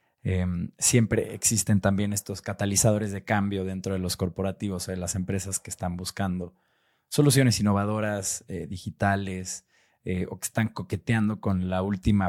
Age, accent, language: 20-39, Mexican, Spanish